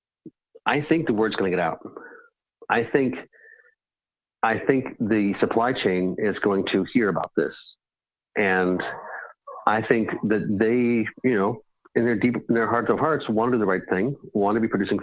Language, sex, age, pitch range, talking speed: English, male, 40-59, 95-115 Hz, 185 wpm